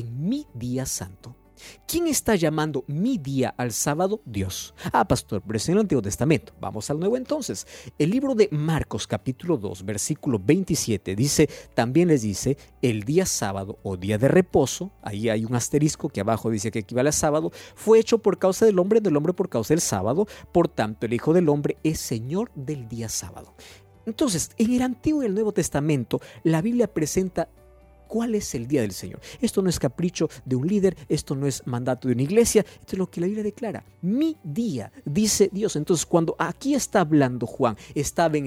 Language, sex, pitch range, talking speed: Spanish, male, 115-190 Hz, 200 wpm